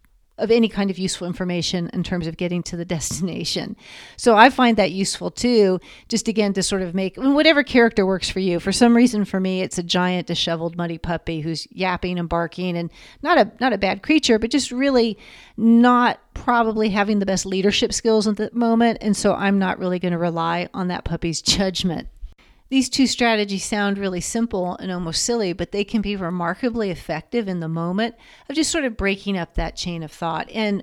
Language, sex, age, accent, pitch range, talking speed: English, female, 40-59, American, 175-215 Hz, 205 wpm